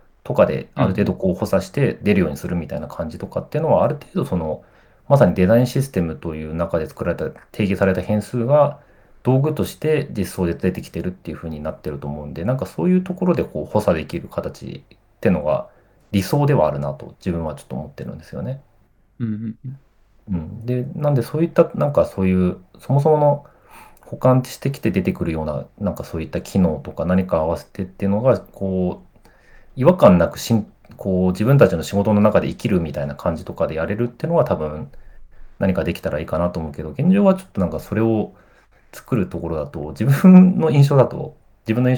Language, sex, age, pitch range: Japanese, male, 40-59, 90-135 Hz